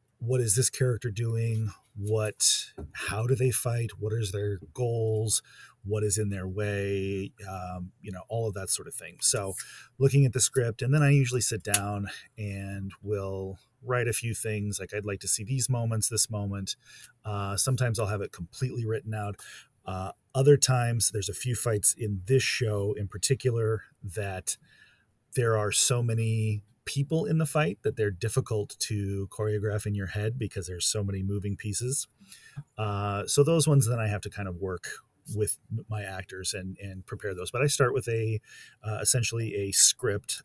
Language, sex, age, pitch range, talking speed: English, male, 30-49, 100-120 Hz, 185 wpm